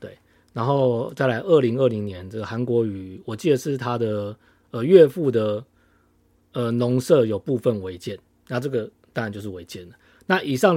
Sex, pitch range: male, 105-140 Hz